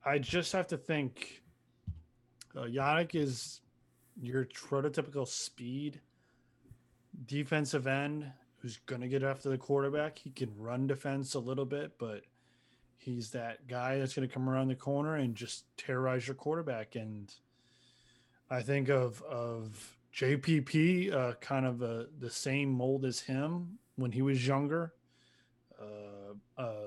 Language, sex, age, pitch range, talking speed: English, male, 20-39, 120-140 Hz, 140 wpm